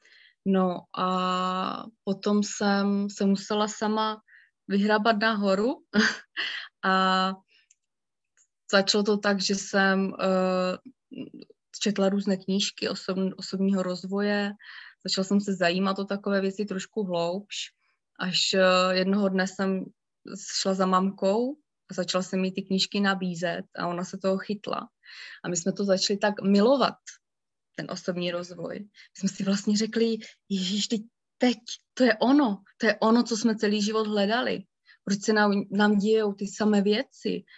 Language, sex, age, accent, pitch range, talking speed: Czech, female, 20-39, native, 190-215 Hz, 135 wpm